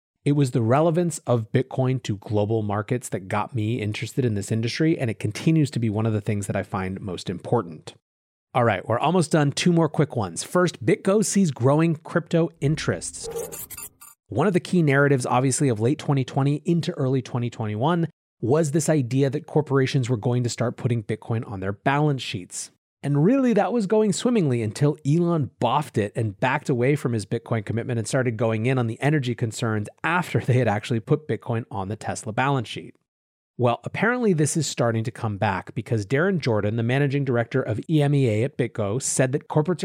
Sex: male